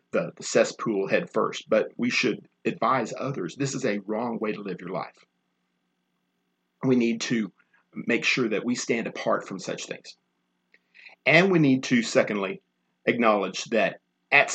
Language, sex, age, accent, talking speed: English, male, 40-59, American, 160 wpm